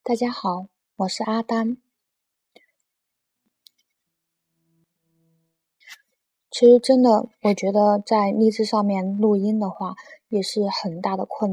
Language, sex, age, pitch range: Chinese, female, 20-39, 185-220 Hz